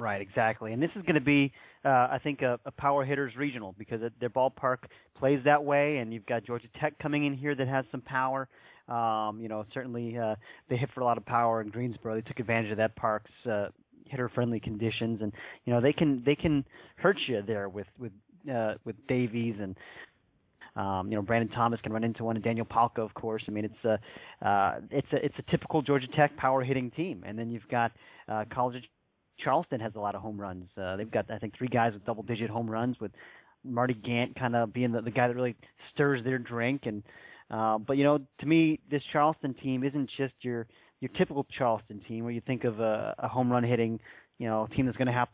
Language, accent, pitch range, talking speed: English, American, 110-135 Hz, 235 wpm